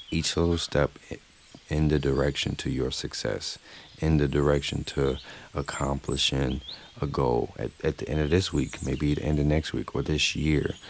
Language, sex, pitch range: English, male, 70-80 Hz